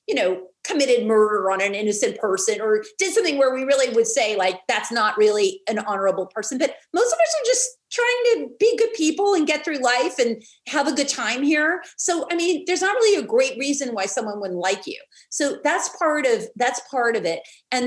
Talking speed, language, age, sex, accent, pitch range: 220 wpm, English, 40-59, female, American, 220-335 Hz